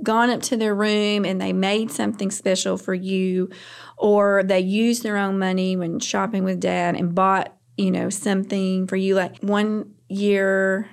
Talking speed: 175 wpm